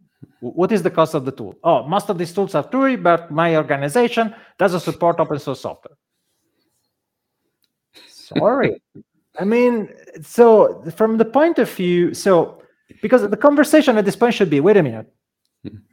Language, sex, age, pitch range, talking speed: English, male, 30-49, 140-195 Hz, 160 wpm